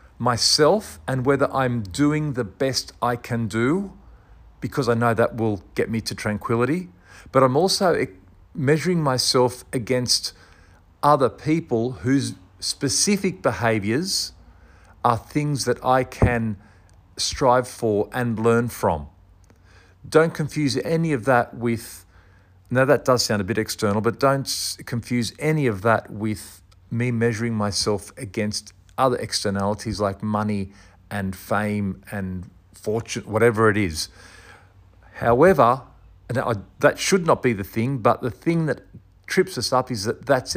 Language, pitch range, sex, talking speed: English, 95-130 Hz, male, 135 wpm